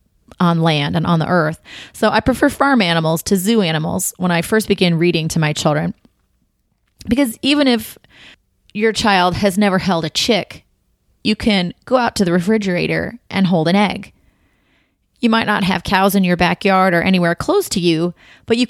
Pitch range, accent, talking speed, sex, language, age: 175-225 Hz, American, 185 wpm, female, English, 30-49